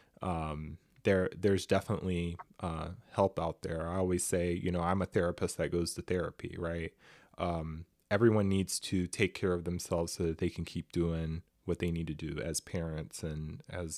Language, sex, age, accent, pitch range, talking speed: English, male, 20-39, American, 90-120 Hz, 190 wpm